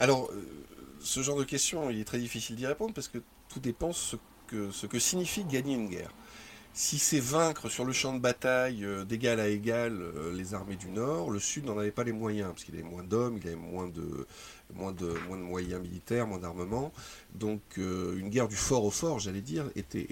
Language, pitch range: French, 95-120 Hz